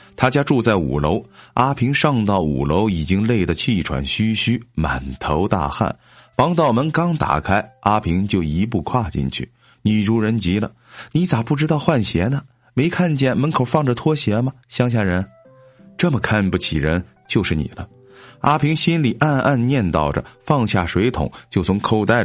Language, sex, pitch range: Chinese, male, 95-145 Hz